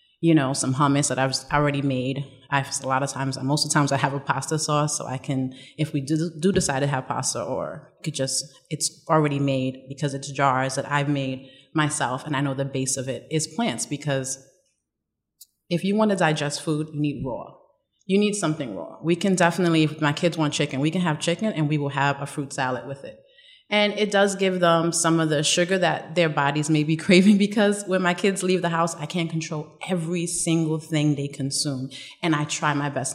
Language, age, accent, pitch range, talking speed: English, 30-49, American, 140-180 Hz, 225 wpm